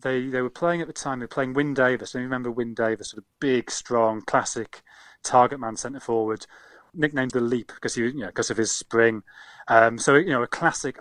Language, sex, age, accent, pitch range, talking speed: English, male, 30-49, British, 115-130 Hz, 240 wpm